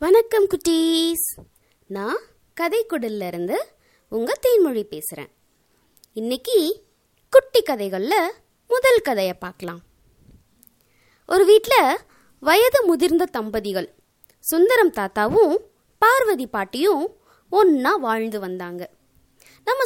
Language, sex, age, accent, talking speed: Tamil, female, 20-39, native, 80 wpm